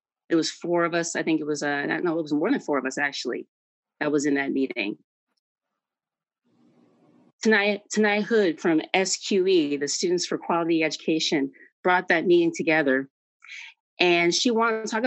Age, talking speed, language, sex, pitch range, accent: 30-49, 175 wpm, English, female, 150-215 Hz, American